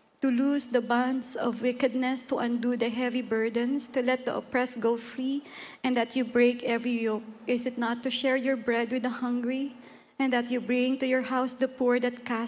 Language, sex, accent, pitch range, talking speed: Filipino, female, native, 230-265 Hz, 205 wpm